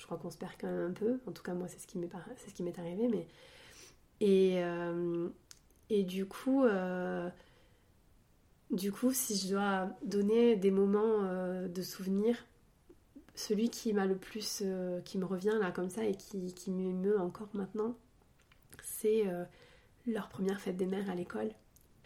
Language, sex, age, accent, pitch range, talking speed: French, female, 30-49, French, 180-215 Hz, 155 wpm